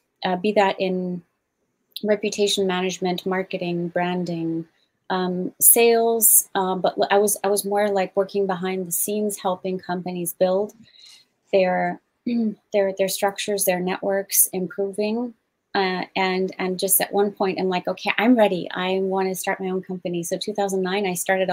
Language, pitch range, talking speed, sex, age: English, 185-215 Hz, 155 wpm, female, 30-49